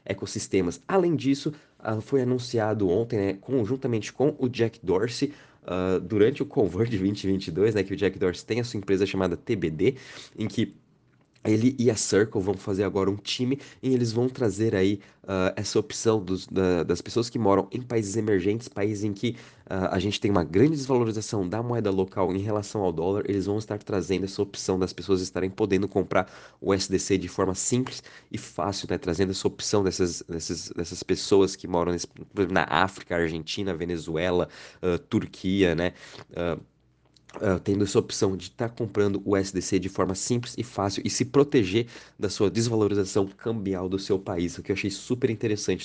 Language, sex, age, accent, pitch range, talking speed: Portuguese, male, 20-39, Brazilian, 95-110 Hz, 170 wpm